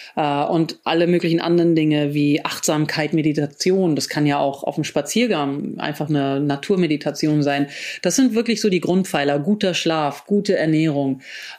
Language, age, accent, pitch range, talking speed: German, 40-59, German, 150-185 Hz, 150 wpm